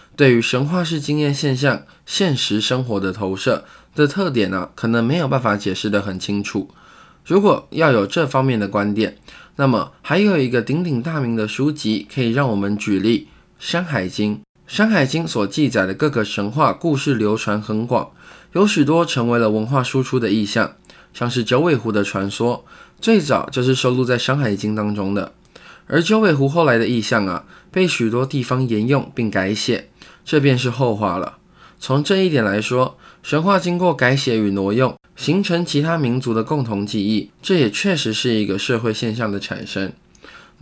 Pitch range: 110-150 Hz